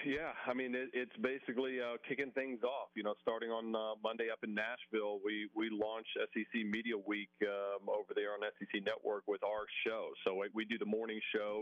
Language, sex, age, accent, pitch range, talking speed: English, male, 40-59, American, 105-125 Hz, 210 wpm